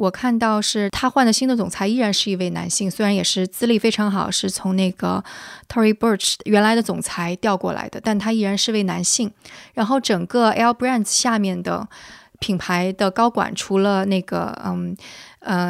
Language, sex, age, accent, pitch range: Chinese, female, 20-39, native, 190-230 Hz